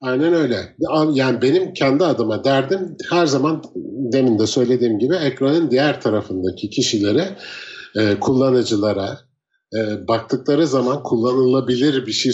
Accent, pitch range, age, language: native, 115-150 Hz, 50-69, Turkish